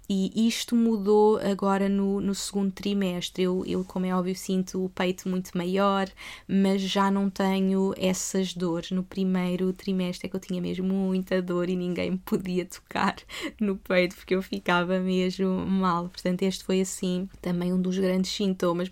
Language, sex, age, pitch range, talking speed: Portuguese, female, 20-39, 185-205 Hz, 175 wpm